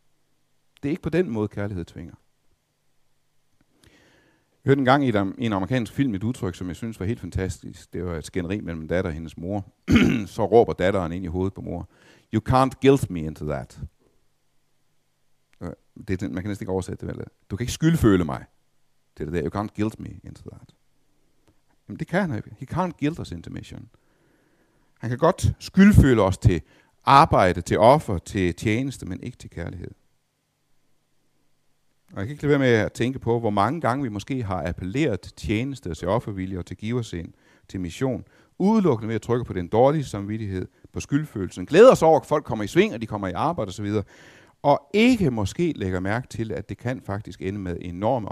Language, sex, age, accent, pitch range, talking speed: Danish, male, 60-79, native, 95-130 Hz, 200 wpm